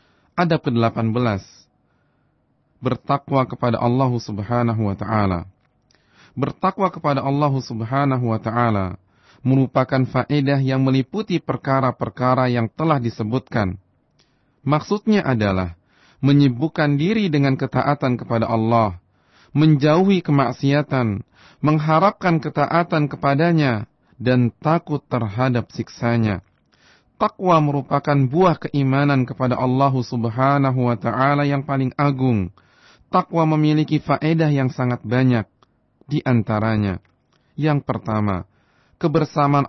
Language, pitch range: Indonesian, 115-145 Hz